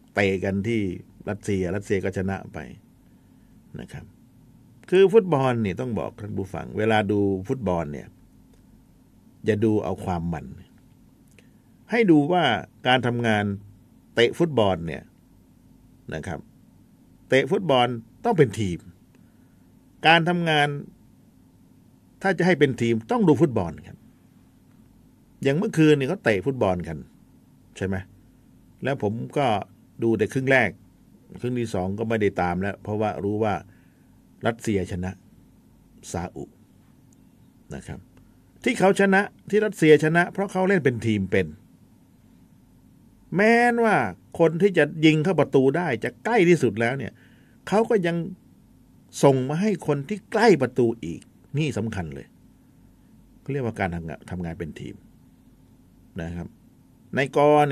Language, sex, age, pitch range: Thai, male, 60-79, 95-150 Hz